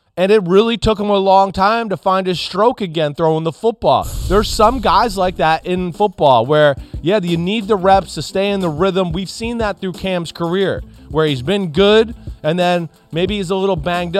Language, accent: English, American